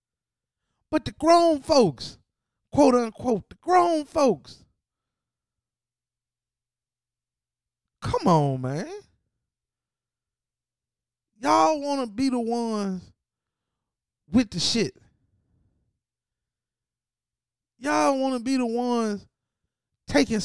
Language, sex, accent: English, male, American